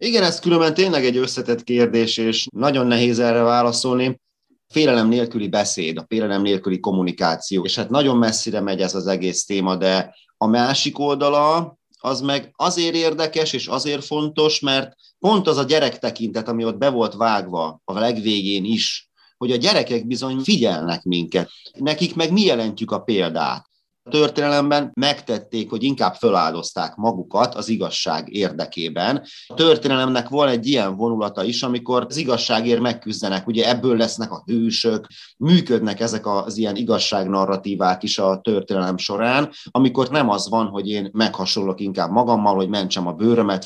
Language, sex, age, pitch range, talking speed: Hungarian, male, 30-49, 100-135 Hz, 155 wpm